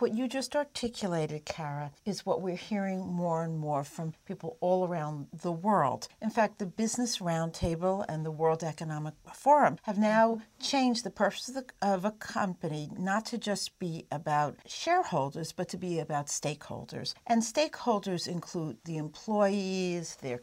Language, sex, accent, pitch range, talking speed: English, female, American, 165-240 Hz, 160 wpm